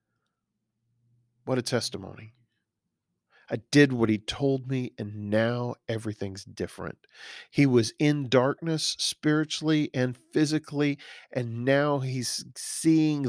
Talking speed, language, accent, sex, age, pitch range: 110 wpm, English, American, male, 40-59, 110-135 Hz